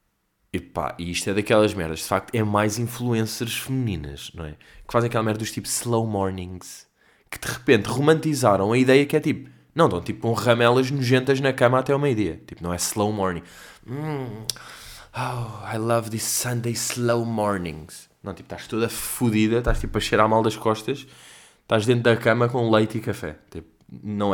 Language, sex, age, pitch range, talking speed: Portuguese, male, 20-39, 95-120 Hz, 190 wpm